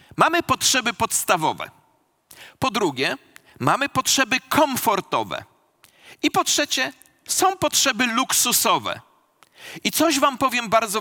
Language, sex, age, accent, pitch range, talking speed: Polish, male, 40-59, native, 225-290 Hz, 105 wpm